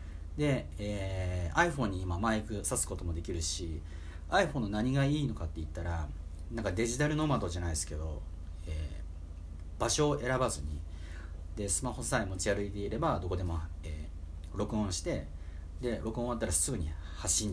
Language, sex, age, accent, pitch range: Japanese, male, 40-59, native, 80-105 Hz